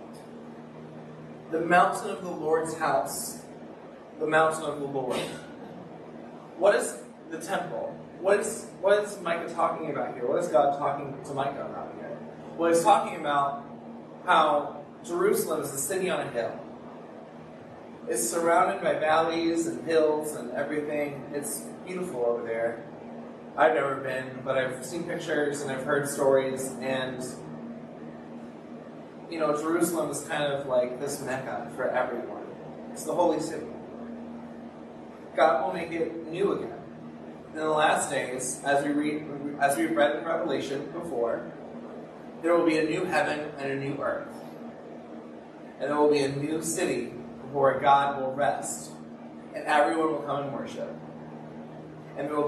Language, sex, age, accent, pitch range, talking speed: English, male, 30-49, American, 130-160 Hz, 145 wpm